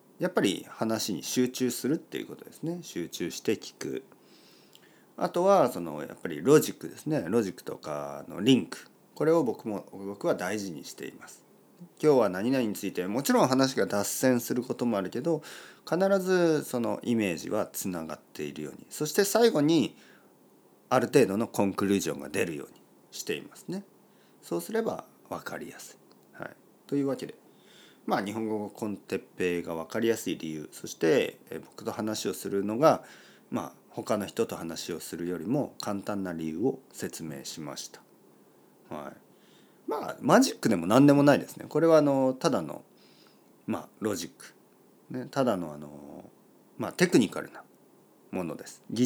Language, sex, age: Japanese, male, 40-59